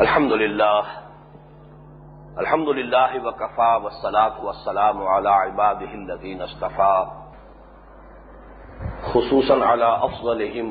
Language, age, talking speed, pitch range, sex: English, 50-69, 80 wpm, 105-125 Hz, male